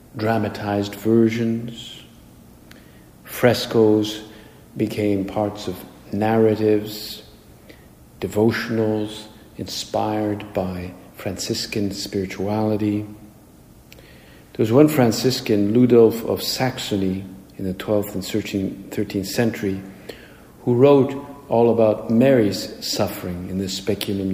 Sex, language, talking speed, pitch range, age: male, English, 85 wpm, 95-115 Hz, 50-69